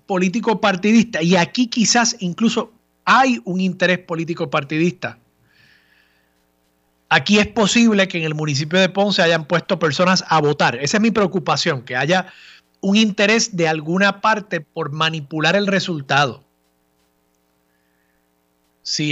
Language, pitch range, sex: Spanish, 140-195 Hz, male